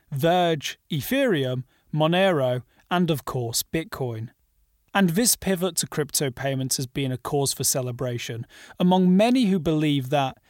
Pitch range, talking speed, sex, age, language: 135-190 Hz, 135 wpm, male, 30-49, English